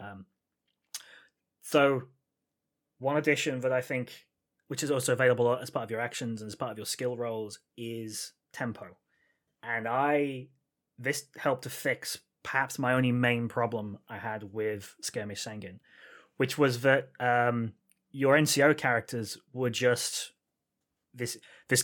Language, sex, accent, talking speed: English, male, British, 145 wpm